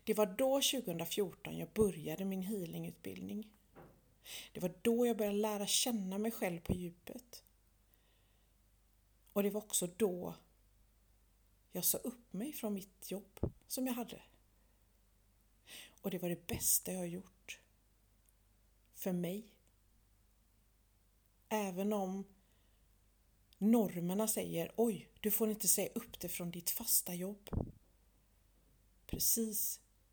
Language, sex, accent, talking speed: Swedish, female, native, 120 wpm